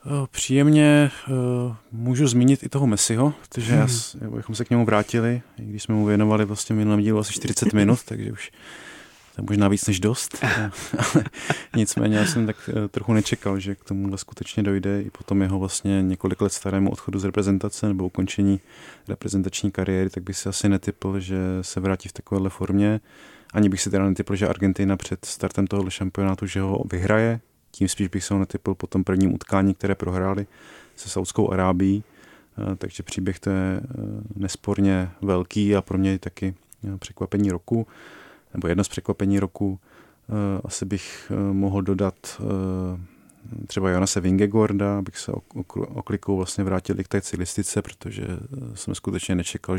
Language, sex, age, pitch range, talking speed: Czech, male, 30-49, 95-110 Hz, 165 wpm